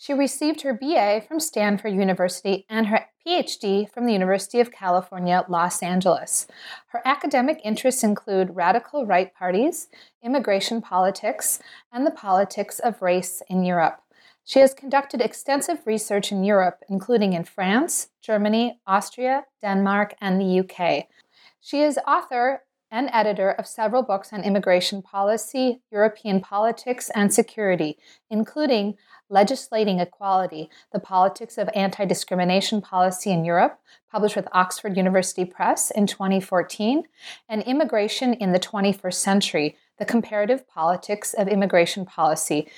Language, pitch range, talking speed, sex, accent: English, 185-240 Hz, 130 wpm, female, American